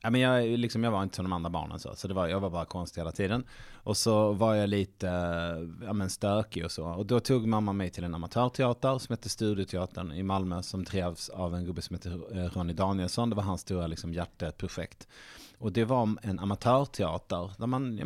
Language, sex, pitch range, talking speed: Swedish, male, 90-115 Hz, 225 wpm